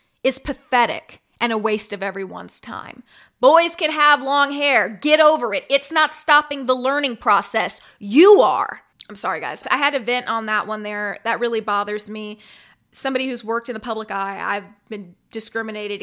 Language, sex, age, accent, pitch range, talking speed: English, female, 20-39, American, 220-295 Hz, 185 wpm